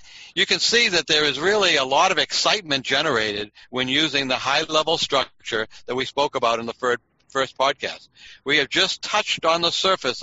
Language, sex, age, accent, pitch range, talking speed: English, male, 60-79, American, 125-155 Hz, 190 wpm